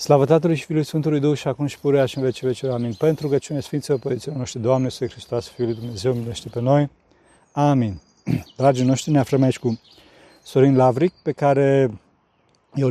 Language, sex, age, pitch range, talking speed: Romanian, male, 40-59, 120-150 Hz, 190 wpm